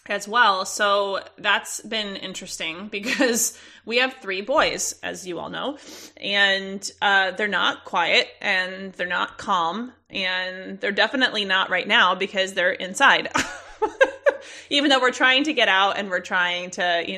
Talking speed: 155 wpm